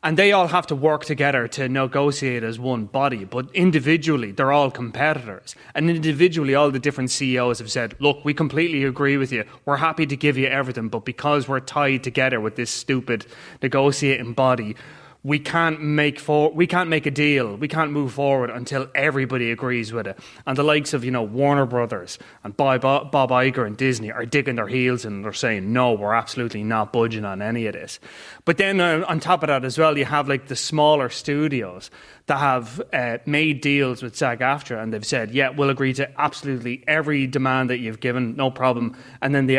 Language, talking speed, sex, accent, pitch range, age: English, 205 wpm, male, Irish, 125-150 Hz, 20-39